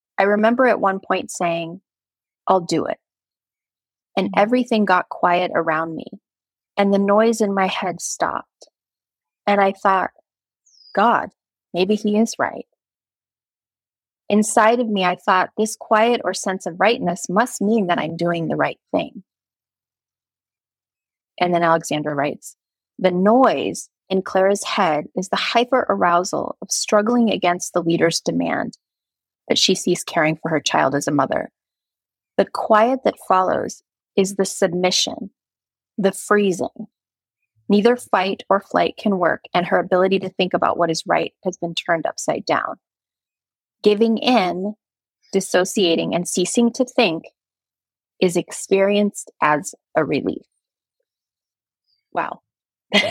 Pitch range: 175-215 Hz